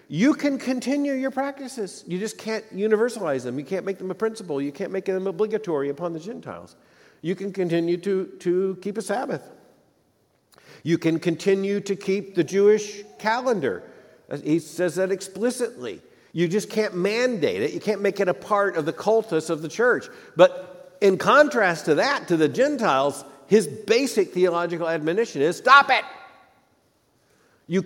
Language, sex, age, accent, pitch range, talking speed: English, male, 50-69, American, 170-240 Hz, 165 wpm